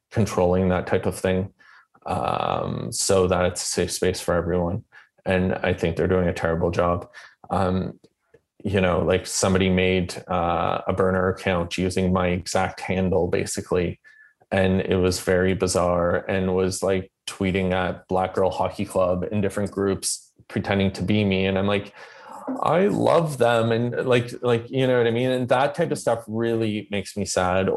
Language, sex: Portuguese, male